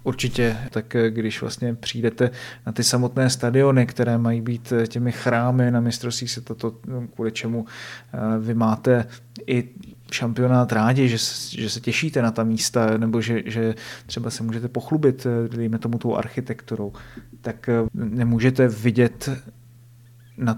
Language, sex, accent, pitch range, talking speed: Czech, male, native, 115-120 Hz, 135 wpm